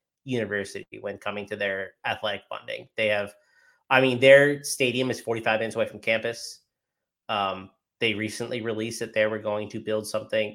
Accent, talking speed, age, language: American, 170 wpm, 30-49, English